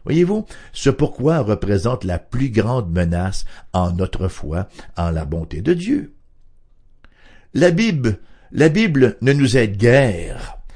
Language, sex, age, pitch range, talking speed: English, male, 60-79, 90-140 Hz, 135 wpm